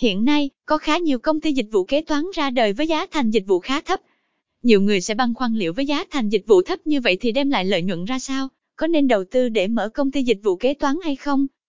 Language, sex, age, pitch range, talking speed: Vietnamese, female, 20-39, 225-295 Hz, 280 wpm